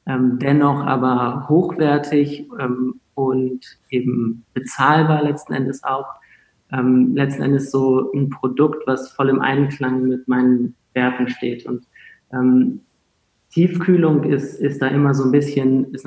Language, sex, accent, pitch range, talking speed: German, male, German, 125-145 Hz, 135 wpm